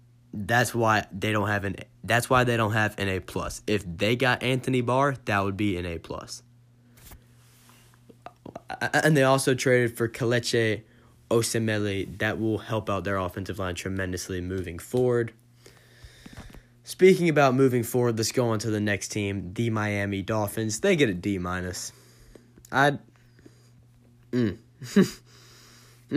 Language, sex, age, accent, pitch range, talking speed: English, male, 20-39, American, 110-125 Hz, 140 wpm